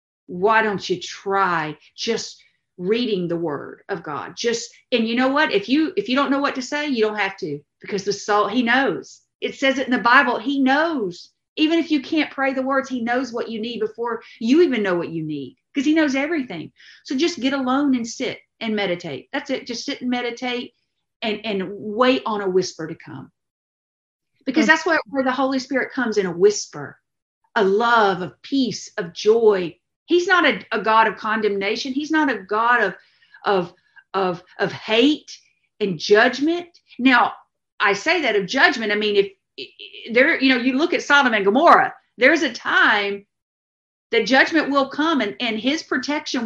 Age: 50-69